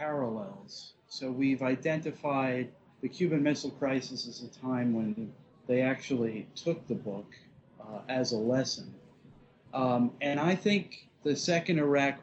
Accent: American